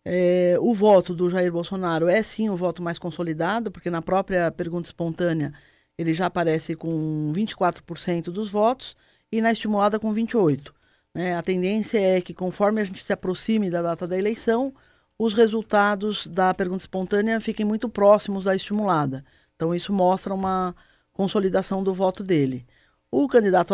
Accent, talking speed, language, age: Brazilian, 155 wpm, Portuguese, 20-39